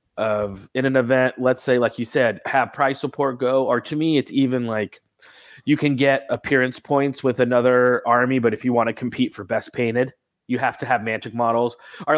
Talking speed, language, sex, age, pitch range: 210 wpm, English, male, 30-49, 115-135 Hz